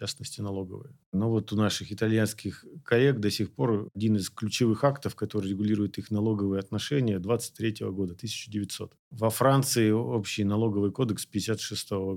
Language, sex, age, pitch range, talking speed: Russian, male, 40-59, 105-130 Hz, 155 wpm